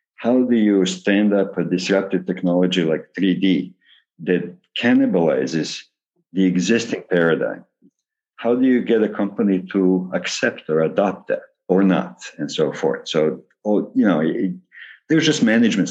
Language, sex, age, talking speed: English, male, 50-69, 150 wpm